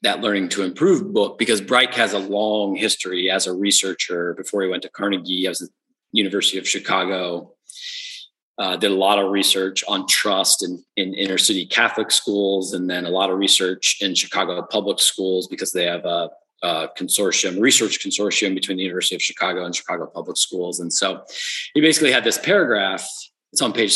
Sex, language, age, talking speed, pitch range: male, English, 30-49, 190 wpm, 95-115 Hz